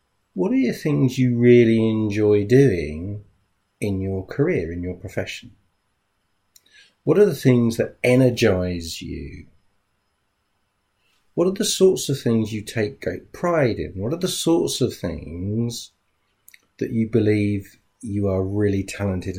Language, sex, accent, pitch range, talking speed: English, male, British, 95-120 Hz, 140 wpm